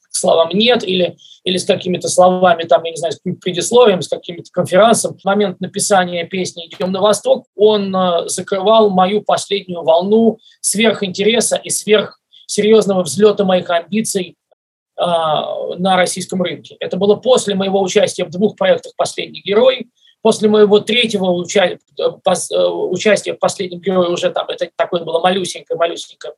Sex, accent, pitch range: male, native, 180-215 Hz